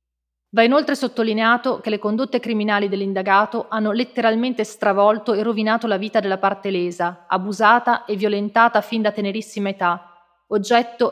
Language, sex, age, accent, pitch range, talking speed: Italian, female, 30-49, native, 195-230 Hz, 140 wpm